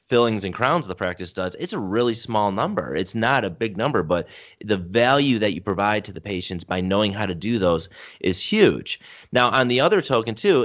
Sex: male